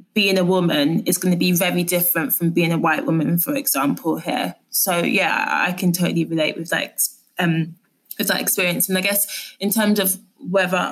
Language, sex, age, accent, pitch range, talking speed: English, female, 20-39, British, 175-215 Hz, 200 wpm